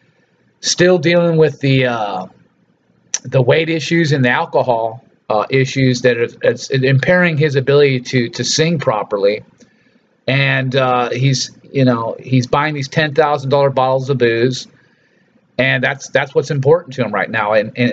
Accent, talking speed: American, 160 wpm